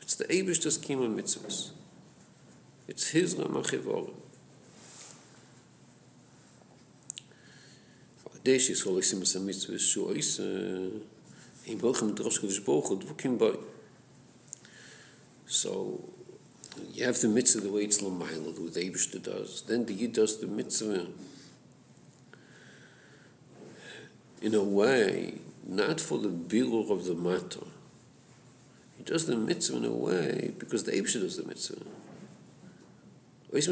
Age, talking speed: 50-69, 85 wpm